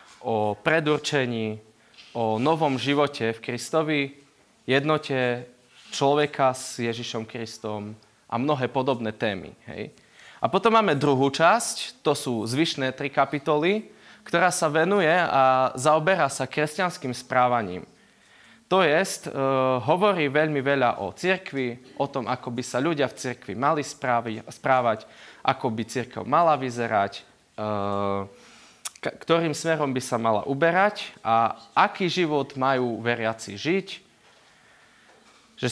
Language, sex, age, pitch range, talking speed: Slovak, male, 20-39, 115-150 Hz, 125 wpm